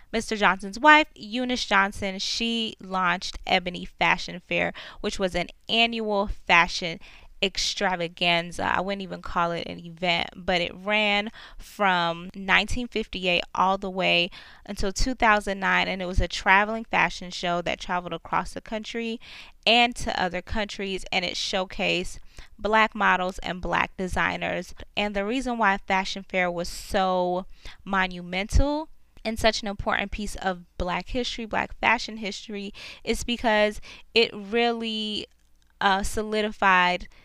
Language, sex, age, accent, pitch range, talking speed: English, female, 20-39, American, 185-225 Hz, 130 wpm